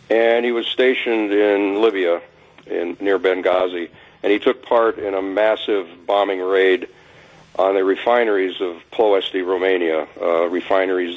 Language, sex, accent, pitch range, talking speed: English, male, American, 95-110 Hz, 135 wpm